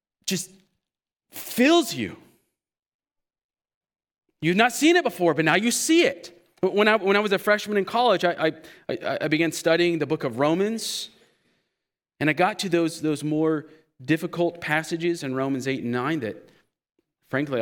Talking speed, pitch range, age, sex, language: 160 wpm, 150-215 Hz, 40-59, male, English